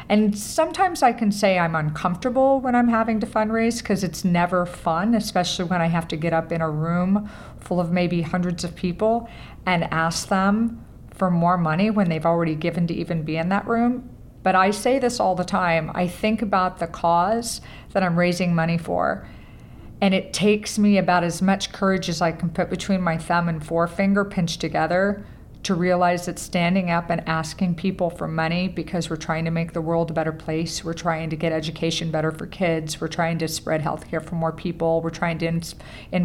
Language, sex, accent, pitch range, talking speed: English, female, American, 165-190 Hz, 210 wpm